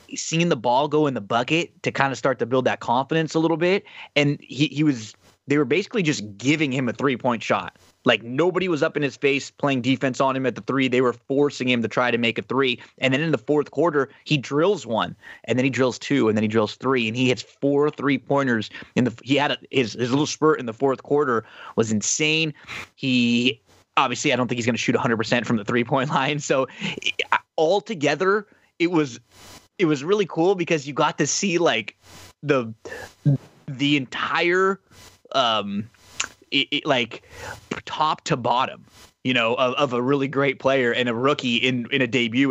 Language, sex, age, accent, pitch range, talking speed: English, male, 20-39, American, 120-150 Hz, 205 wpm